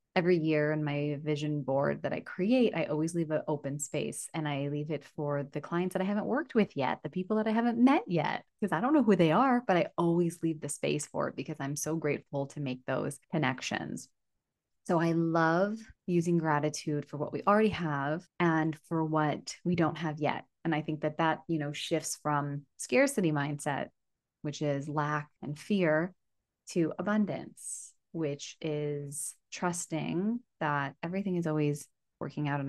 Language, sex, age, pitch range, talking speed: English, female, 20-39, 145-170 Hz, 190 wpm